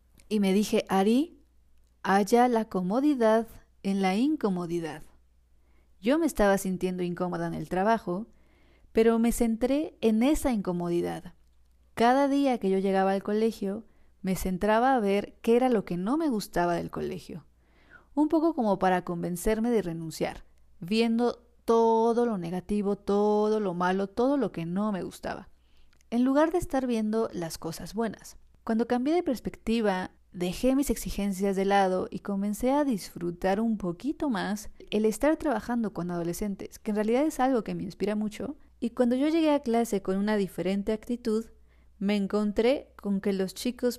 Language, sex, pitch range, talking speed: Spanish, female, 190-240 Hz, 160 wpm